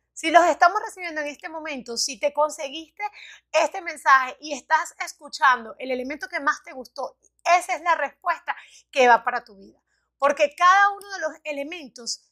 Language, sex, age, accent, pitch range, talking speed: Spanish, female, 30-49, American, 265-320 Hz, 175 wpm